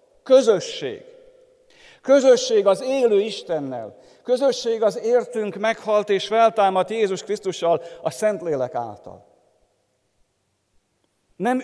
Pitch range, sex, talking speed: 150-235 Hz, male, 95 wpm